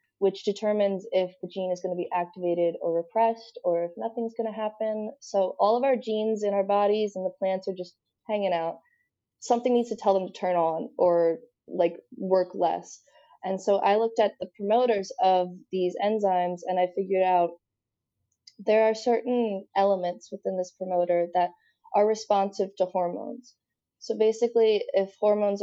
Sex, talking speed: female, 170 wpm